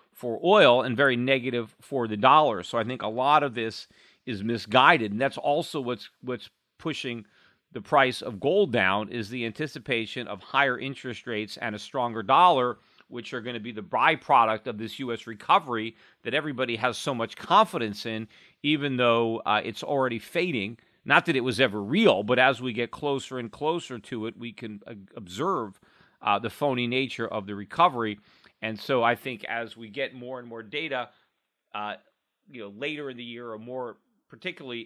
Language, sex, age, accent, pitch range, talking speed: English, male, 40-59, American, 115-140 Hz, 190 wpm